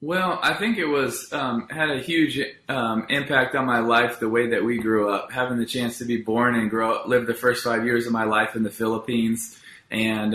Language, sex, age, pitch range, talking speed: English, male, 20-39, 115-135 Hz, 230 wpm